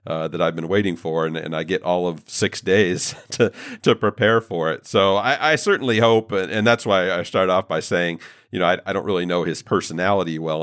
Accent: American